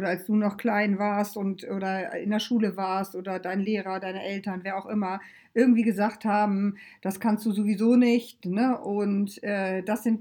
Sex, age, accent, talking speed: female, 50-69, German, 195 wpm